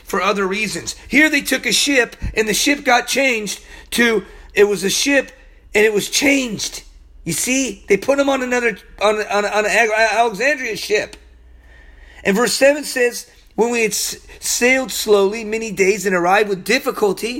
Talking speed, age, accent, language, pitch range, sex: 170 wpm, 40-59, American, English, 175-235 Hz, male